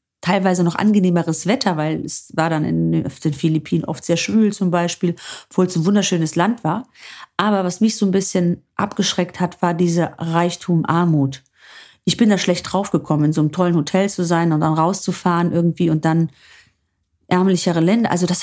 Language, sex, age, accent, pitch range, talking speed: German, female, 40-59, German, 160-195 Hz, 180 wpm